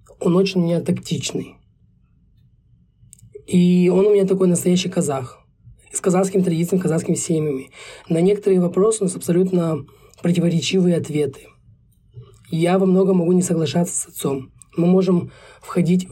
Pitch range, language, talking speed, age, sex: 155-185 Hz, Russian, 135 wpm, 20-39, male